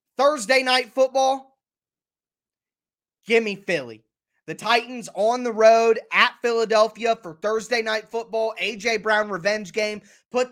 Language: English